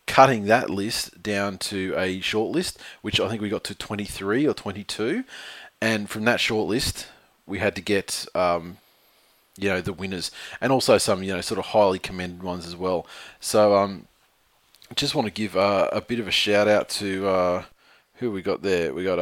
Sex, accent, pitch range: male, Australian, 90-105 Hz